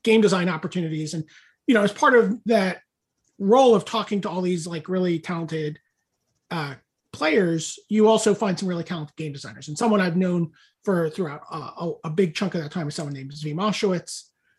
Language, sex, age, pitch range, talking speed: English, male, 30-49, 160-205 Hz, 195 wpm